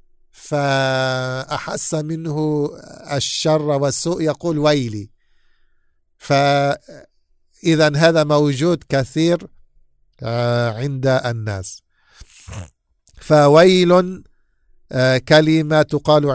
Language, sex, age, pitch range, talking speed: English, male, 50-69, 125-155 Hz, 55 wpm